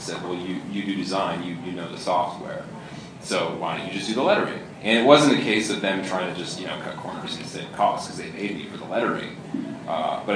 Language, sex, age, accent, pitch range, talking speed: English, male, 30-49, American, 100-120 Hz, 260 wpm